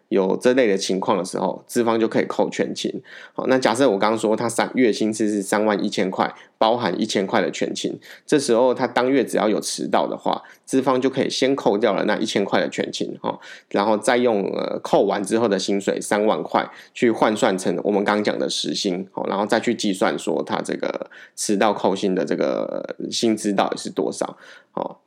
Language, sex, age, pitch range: Chinese, male, 20-39, 105-130 Hz